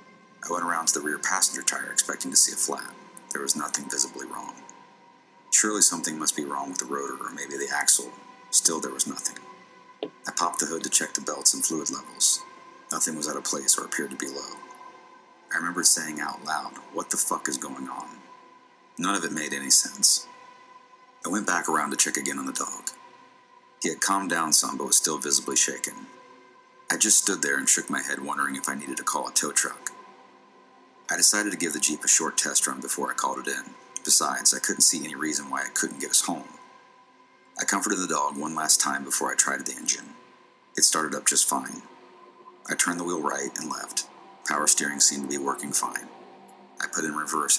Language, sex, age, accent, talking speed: English, male, 40-59, American, 215 wpm